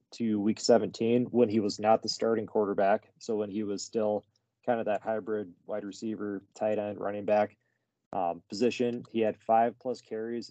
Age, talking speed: 20-39, 185 wpm